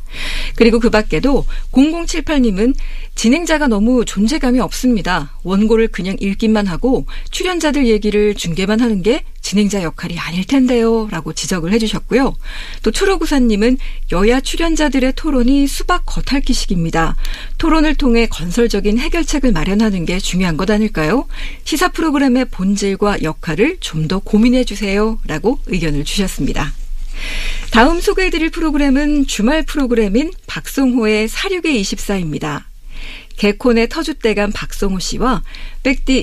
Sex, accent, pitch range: female, native, 200-275 Hz